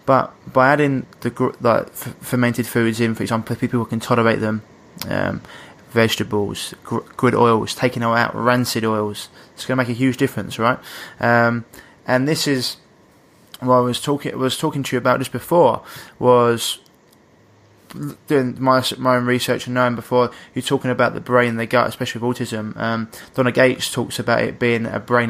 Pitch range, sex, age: 115-130 Hz, male, 20-39